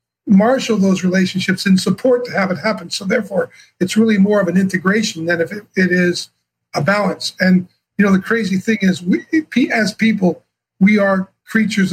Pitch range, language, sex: 180-210 Hz, English, male